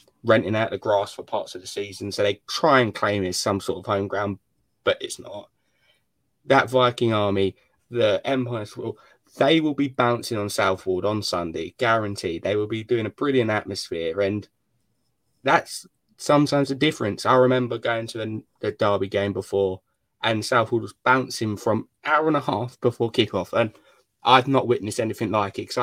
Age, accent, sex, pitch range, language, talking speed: 20-39, British, male, 105-130 Hz, English, 180 wpm